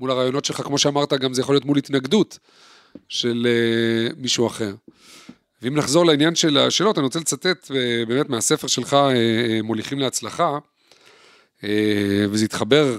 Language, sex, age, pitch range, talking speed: Hebrew, male, 40-59, 120-155 Hz, 155 wpm